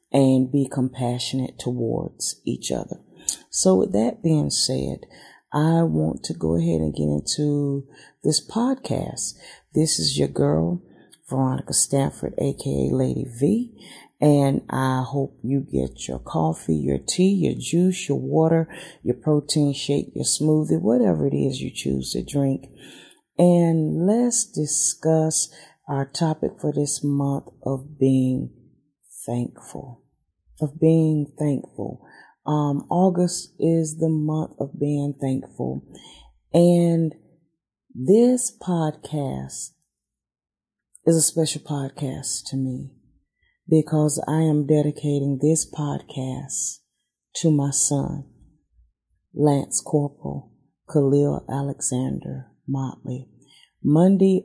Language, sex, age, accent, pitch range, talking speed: English, female, 40-59, American, 130-160 Hz, 110 wpm